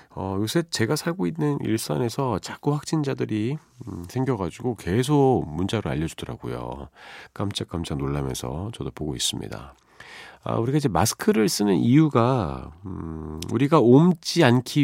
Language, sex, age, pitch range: Korean, male, 40-59, 85-130 Hz